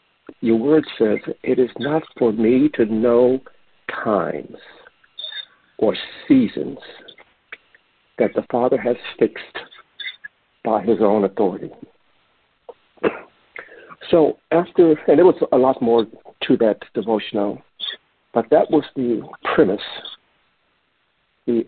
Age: 60-79